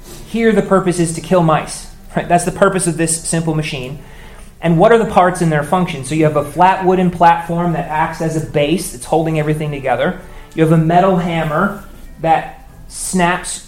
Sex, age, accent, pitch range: male, 30-49, American, 145-180 Hz